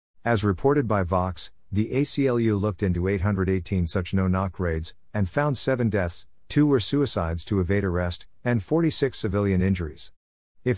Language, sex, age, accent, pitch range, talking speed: English, male, 50-69, American, 90-110 Hz, 150 wpm